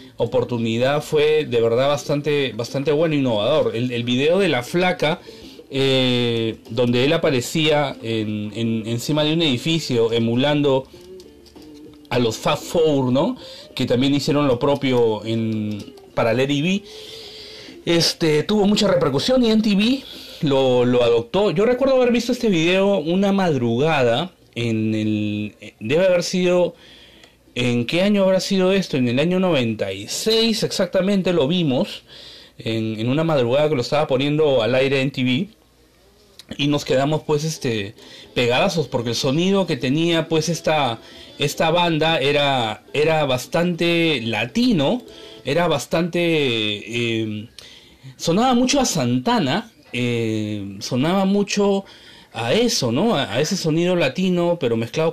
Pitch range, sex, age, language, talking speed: 120-175 Hz, male, 40-59, Spanish, 140 wpm